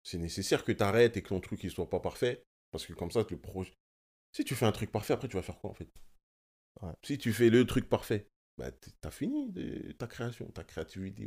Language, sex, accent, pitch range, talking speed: French, male, French, 90-115 Hz, 250 wpm